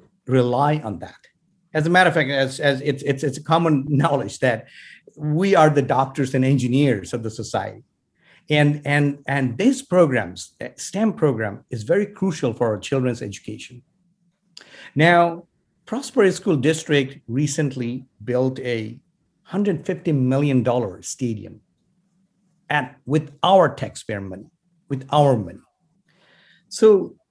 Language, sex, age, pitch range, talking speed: English, male, 50-69, 130-175 Hz, 130 wpm